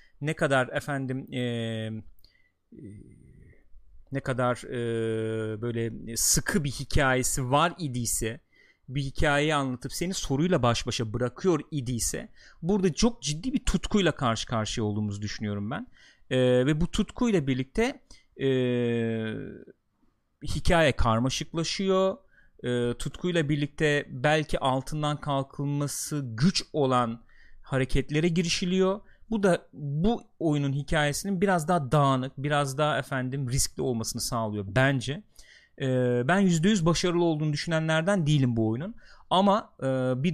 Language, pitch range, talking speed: Turkish, 125-170 Hz, 115 wpm